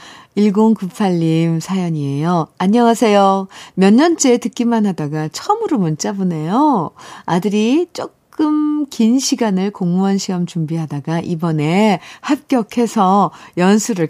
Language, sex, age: Korean, female, 50-69